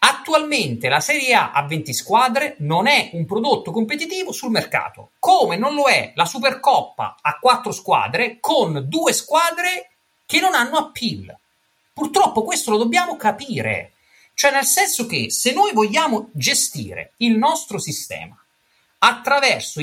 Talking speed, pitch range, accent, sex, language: 140 wpm, 170-280 Hz, native, male, Italian